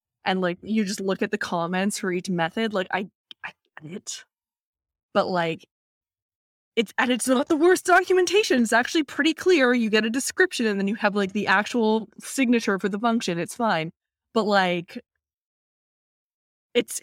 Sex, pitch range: female, 175-220 Hz